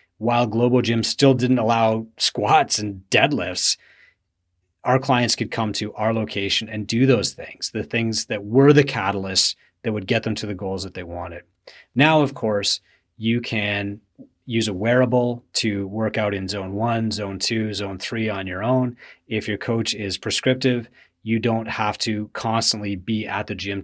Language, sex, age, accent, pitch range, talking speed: English, male, 30-49, American, 100-120 Hz, 180 wpm